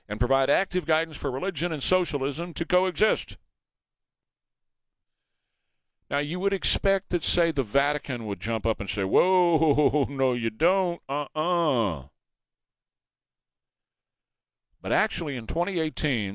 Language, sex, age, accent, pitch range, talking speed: English, male, 40-59, American, 105-155 Hz, 115 wpm